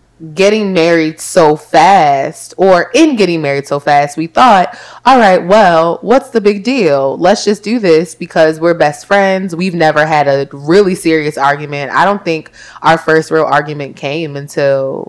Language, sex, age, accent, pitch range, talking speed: English, female, 20-39, American, 145-180 Hz, 170 wpm